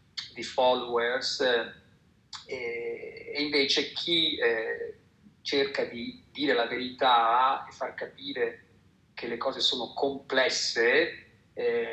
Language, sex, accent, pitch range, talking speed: Italian, male, native, 120-175 Hz, 90 wpm